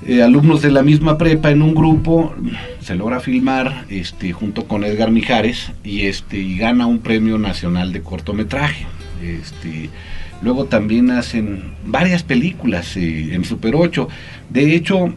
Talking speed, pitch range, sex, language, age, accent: 150 wpm, 100-150 Hz, male, Spanish, 40-59, Mexican